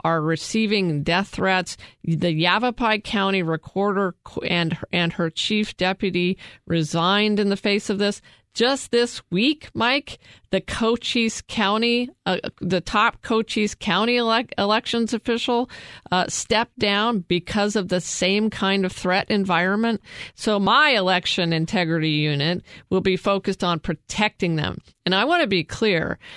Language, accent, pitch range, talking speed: English, American, 165-210 Hz, 140 wpm